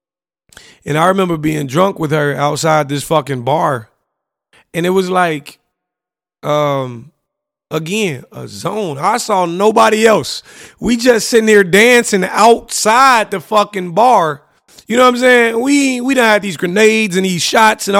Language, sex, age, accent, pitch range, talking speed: English, male, 30-49, American, 160-195 Hz, 155 wpm